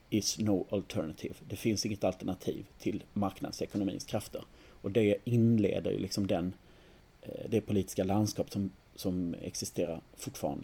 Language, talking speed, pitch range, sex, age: Swedish, 130 wpm, 100-120 Hz, male, 40-59